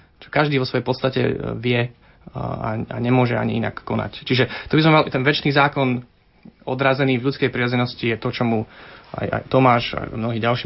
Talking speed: 185 wpm